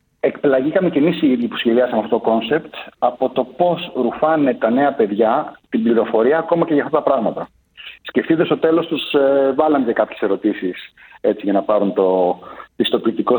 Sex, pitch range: male, 115-160 Hz